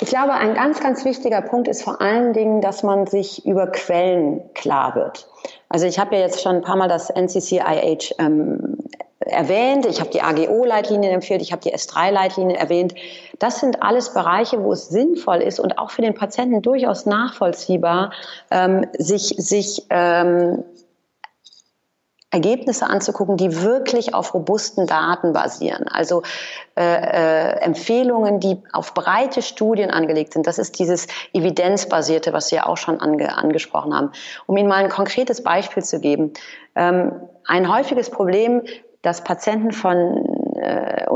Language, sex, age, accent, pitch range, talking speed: German, female, 30-49, German, 180-225 Hz, 150 wpm